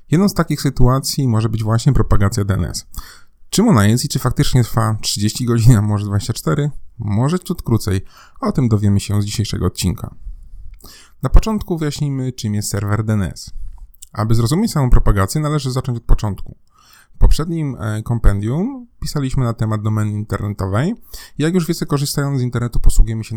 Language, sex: Polish, male